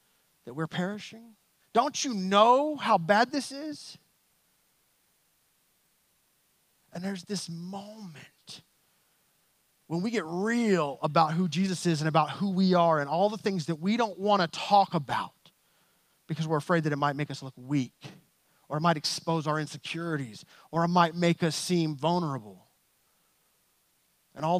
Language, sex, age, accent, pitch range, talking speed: English, male, 30-49, American, 145-205 Hz, 155 wpm